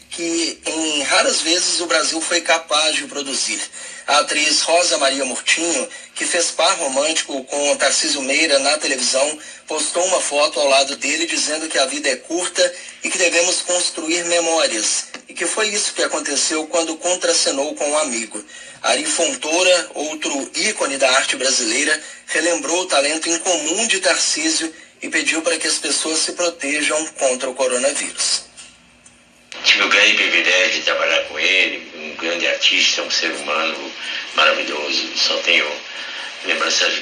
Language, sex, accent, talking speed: Portuguese, male, Brazilian, 150 wpm